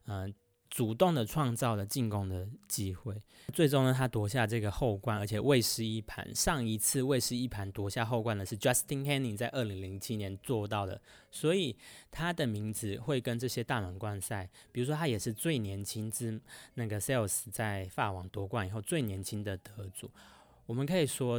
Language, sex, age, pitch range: Chinese, male, 20-39, 100-125 Hz